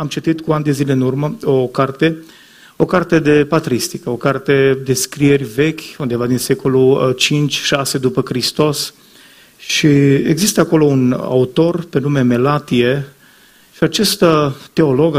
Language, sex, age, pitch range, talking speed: Romanian, male, 30-49, 130-160 Hz, 140 wpm